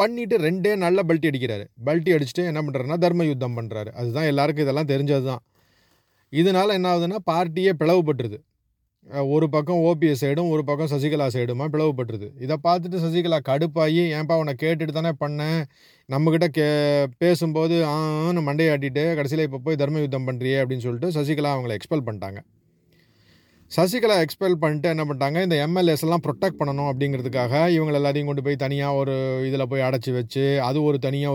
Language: Tamil